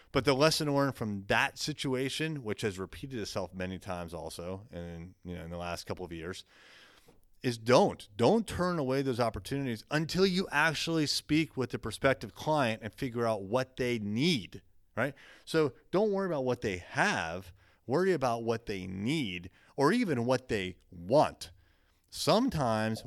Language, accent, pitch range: English, American, 95-140 Hz